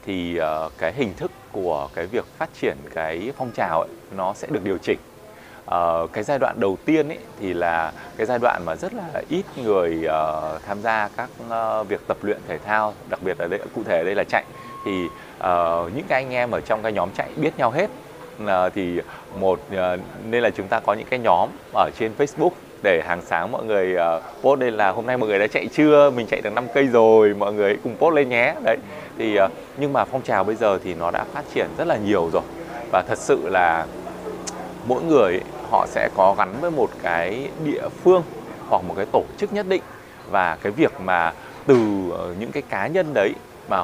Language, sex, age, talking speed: Vietnamese, male, 20-39, 220 wpm